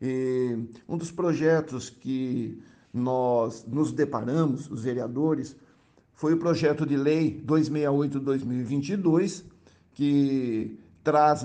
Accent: Brazilian